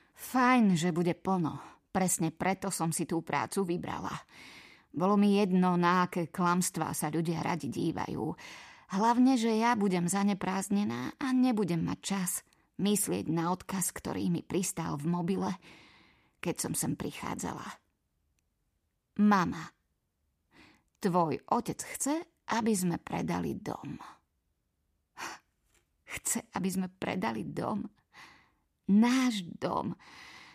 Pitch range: 175-215 Hz